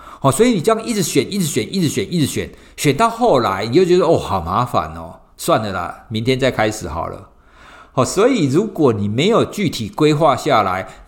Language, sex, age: Chinese, male, 50-69